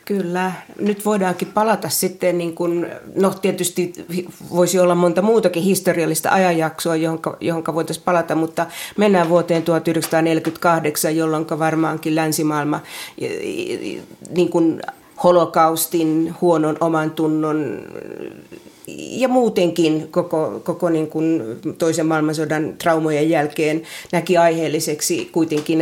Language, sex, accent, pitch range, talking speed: Finnish, female, native, 160-185 Hz, 105 wpm